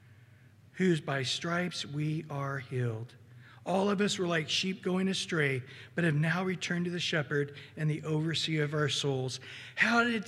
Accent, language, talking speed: American, English, 170 wpm